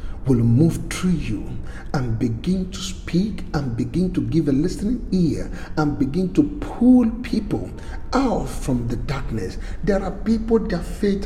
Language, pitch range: English, 115-195 Hz